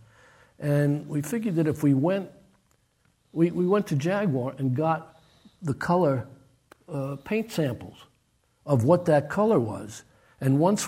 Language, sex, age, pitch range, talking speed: English, male, 60-79, 125-155 Hz, 145 wpm